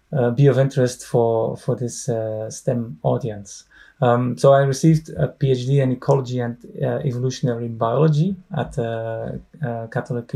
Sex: male